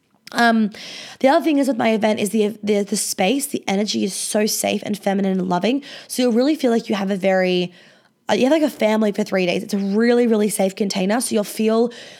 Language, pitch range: English, 200-245 Hz